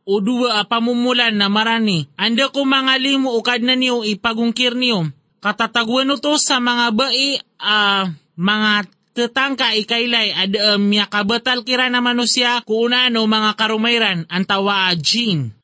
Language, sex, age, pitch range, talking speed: Filipino, male, 30-49, 210-255 Hz, 125 wpm